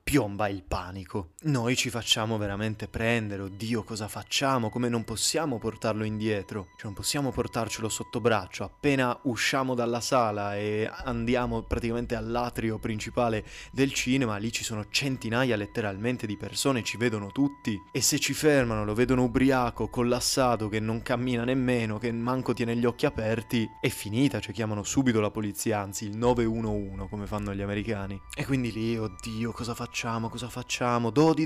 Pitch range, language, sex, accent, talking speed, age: 110-125 Hz, Italian, male, native, 160 wpm, 20-39